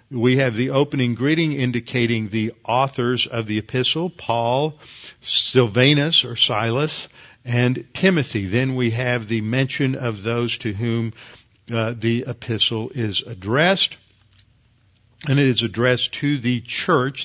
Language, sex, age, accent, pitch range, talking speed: English, male, 50-69, American, 115-130 Hz, 130 wpm